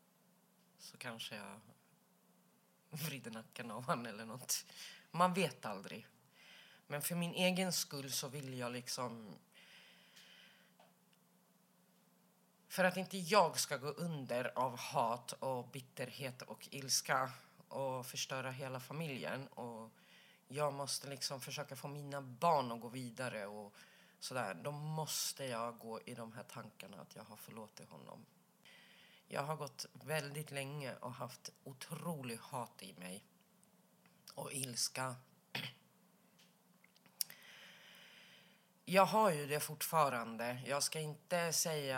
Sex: female